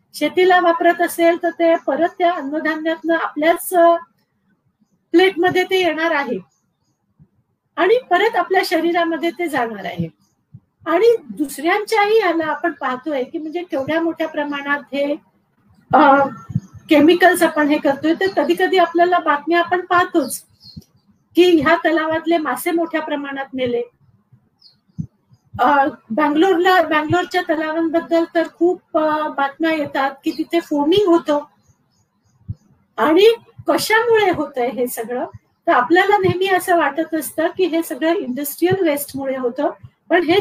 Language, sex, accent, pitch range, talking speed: Marathi, female, native, 290-350 Hz, 70 wpm